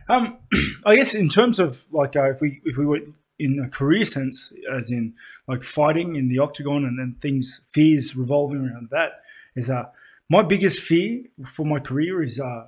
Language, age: English, 20-39